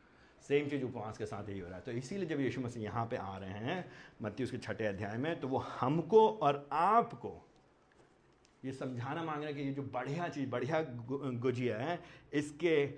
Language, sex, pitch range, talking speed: Hindi, male, 120-165 Hz, 200 wpm